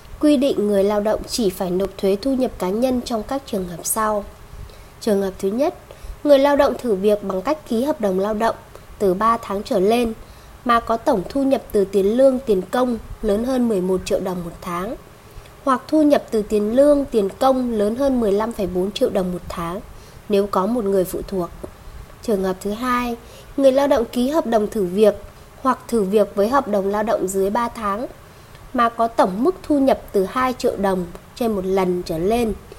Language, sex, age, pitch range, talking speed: Vietnamese, female, 20-39, 200-265 Hz, 210 wpm